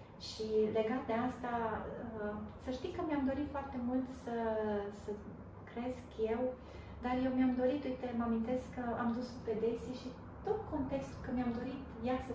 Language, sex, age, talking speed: Romanian, female, 30-49, 170 wpm